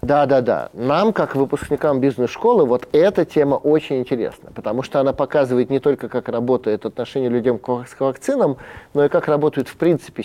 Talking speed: 175 wpm